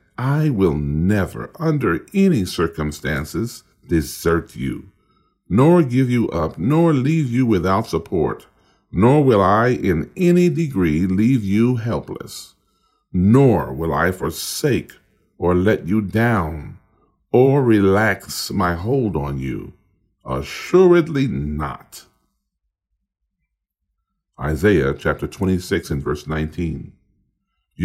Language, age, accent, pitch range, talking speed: English, 50-69, American, 80-120 Hz, 105 wpm